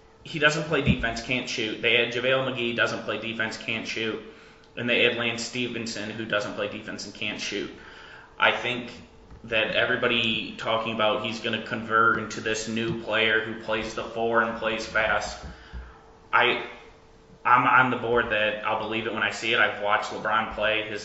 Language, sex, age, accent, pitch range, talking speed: English, male, 20-39, American, 105-115 Hz, 185 wpm